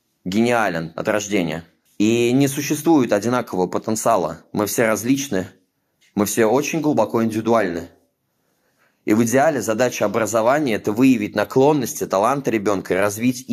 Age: 30-49